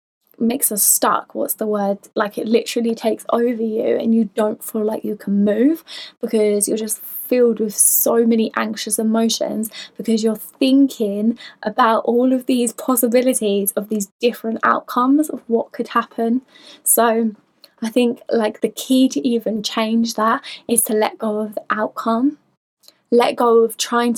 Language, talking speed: English, 165 wpm